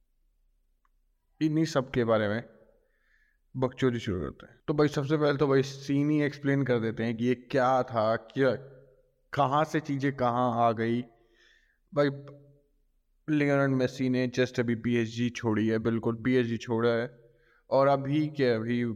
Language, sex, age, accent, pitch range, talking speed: Hindi, male, 20-39, native, 120-140 Hz, 160 wpm